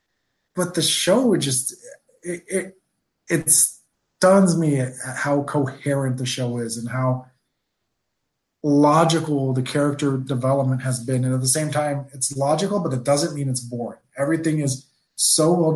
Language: English